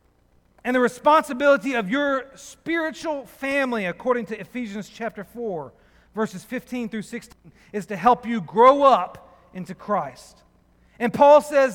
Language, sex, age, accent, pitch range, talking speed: English, male, 40-59, American, 180-250 Hz, 140 wpm